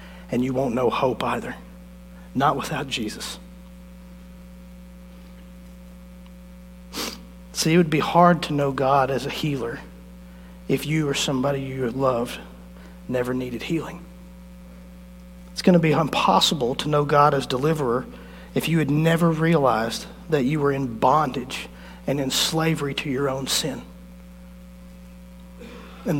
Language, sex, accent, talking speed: English, male, American, 130 wpm